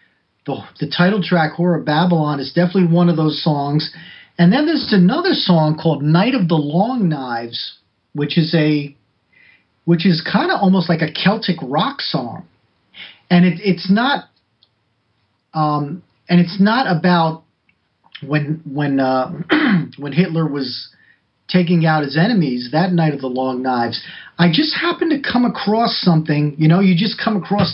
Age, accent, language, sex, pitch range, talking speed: 40-59, American, English, male, 150-190 Hz, 160 wpm